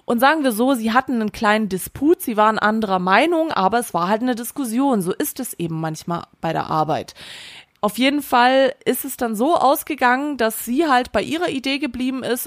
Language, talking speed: German, 205 wpm